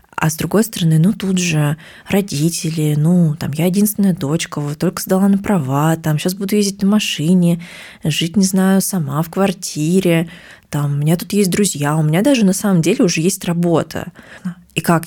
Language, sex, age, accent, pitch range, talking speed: Russian, female, 20-39, native, 155-200 Hz, 185 wpm